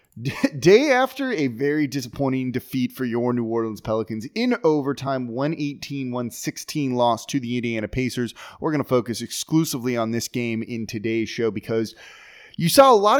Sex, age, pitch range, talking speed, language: male, 30-49, 125-160 Hz, 160 wpm, English